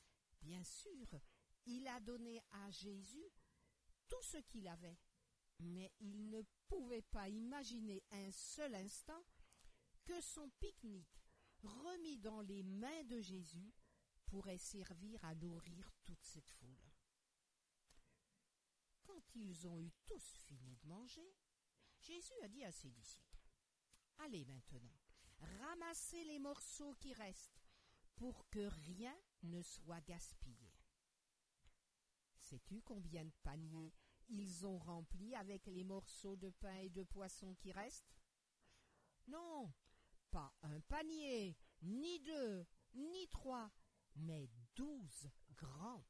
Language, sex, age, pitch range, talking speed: French, female, 50-69, 165-245 Hz, 120 wpm